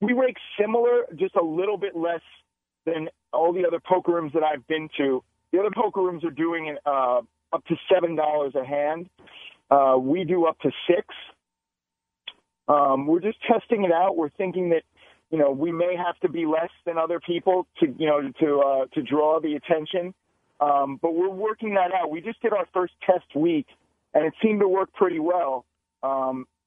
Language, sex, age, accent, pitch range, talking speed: English, male, 40-59, American, 155-190 Hz, 195 wpm